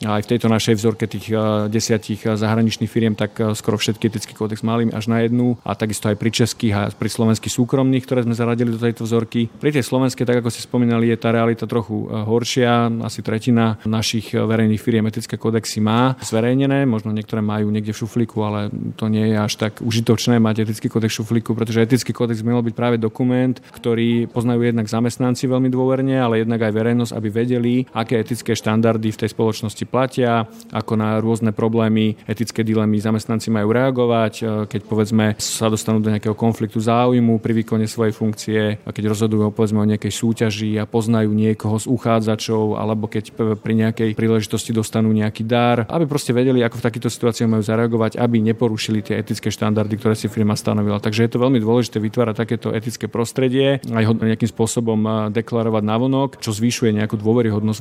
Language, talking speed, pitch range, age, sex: Slovak, 185 wpm, 110-120 Hz, 40-59, male